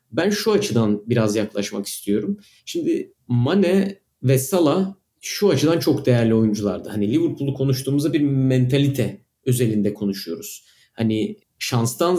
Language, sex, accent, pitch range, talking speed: Turkish, male, native, 115-155 Hz, 120 wpm